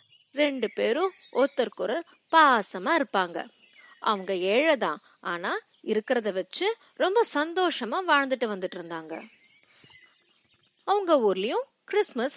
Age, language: 30-49, Tamil